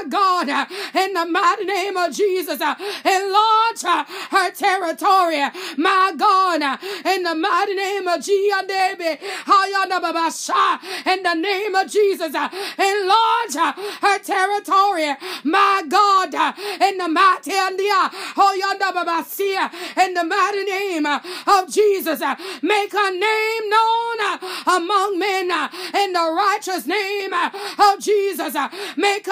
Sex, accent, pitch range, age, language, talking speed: female, American, 360-410 Hz, 30-49, English, 110 wpm